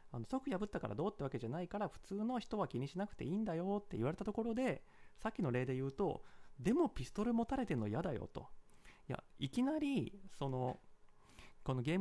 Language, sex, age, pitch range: Japanese, male, 30-49, 130-210 Hz